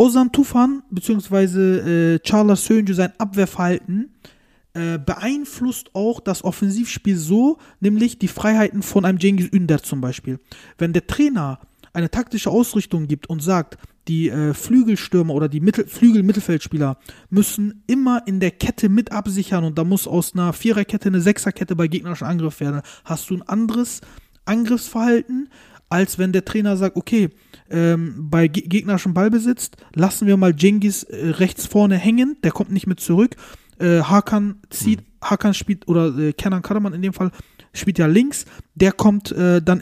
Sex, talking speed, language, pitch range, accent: male, 165 wpm, German, 170-220 Hz, German